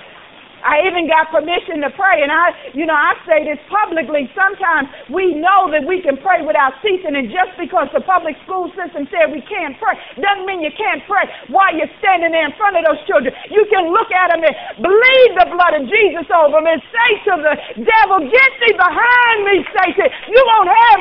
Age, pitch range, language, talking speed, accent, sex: 40-59, 270-370 Hz, English, 210 wpm, American, female